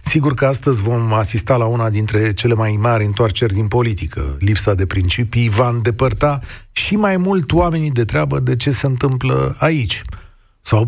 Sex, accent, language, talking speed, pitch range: male, native, Romanian, 170 wpm, 105-155 Hz